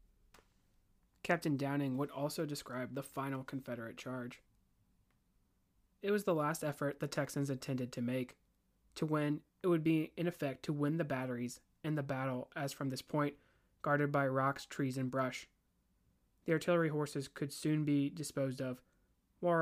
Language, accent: English, American